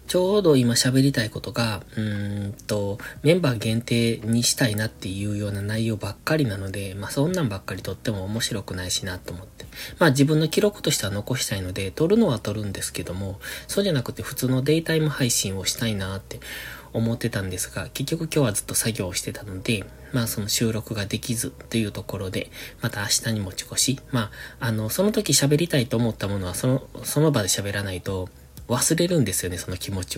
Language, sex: Japanese, male